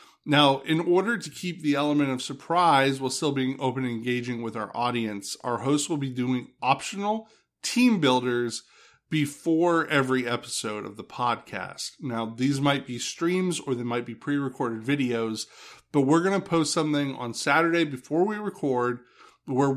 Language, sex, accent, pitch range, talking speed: English, male, American, 125-165 Hz, 165 wpm